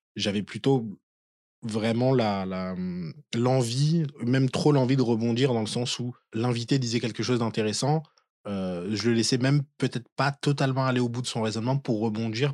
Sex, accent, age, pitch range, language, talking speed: male, French, 20-39, 110-130 Hz, French, 170 wpm